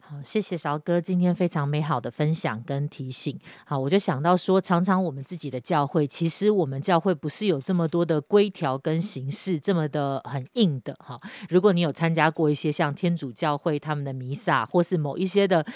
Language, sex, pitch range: Chinese, female, 145-185 Hz